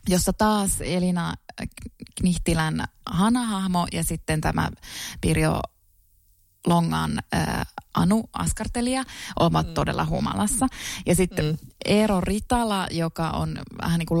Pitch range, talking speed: 160-215 Hz, 100 wpm